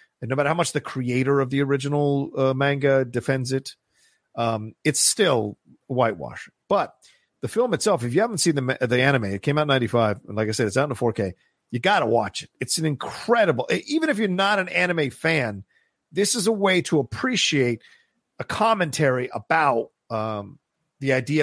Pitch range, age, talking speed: 105-140 Hz, 40-59, 200 wpm